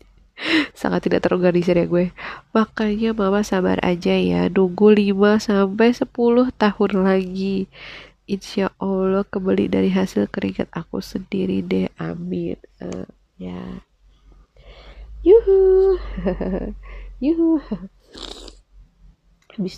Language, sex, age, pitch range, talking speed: Indonesian, female, 20-39, 170-210 Hz, 95 wpm